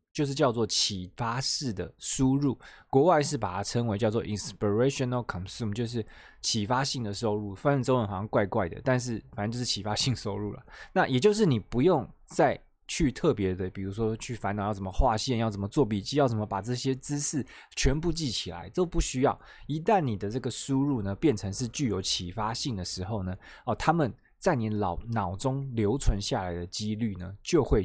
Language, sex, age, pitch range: Chinese, male, 20-39, 100-130 Hz